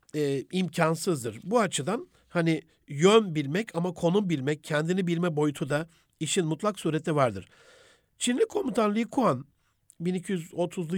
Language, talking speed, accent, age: Turkish, 125 wpm, native, 60-79